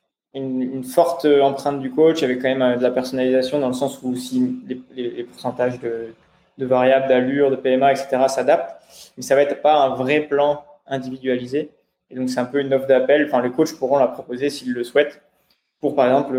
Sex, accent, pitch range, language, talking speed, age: male, French, 125-145 Hz, French, 210 wpm, 20-39